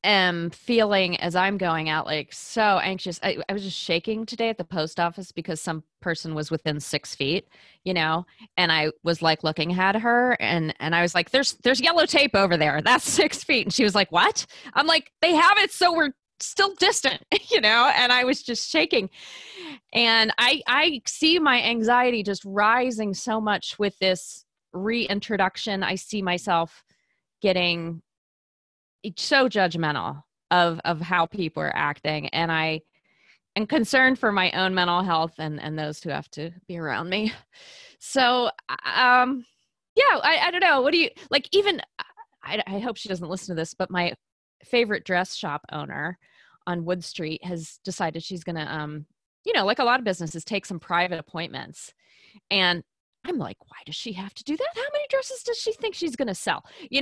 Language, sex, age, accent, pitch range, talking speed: English, female, 20-39, American, 170-250 Hz, 190 wpm